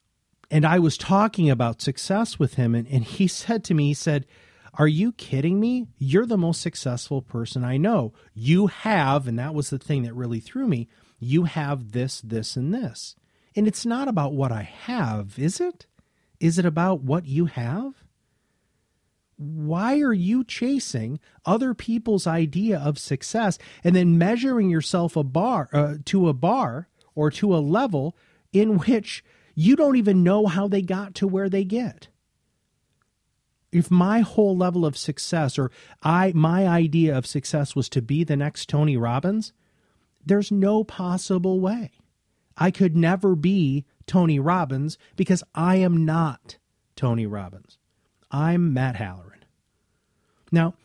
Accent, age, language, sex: American, 40-59, English, male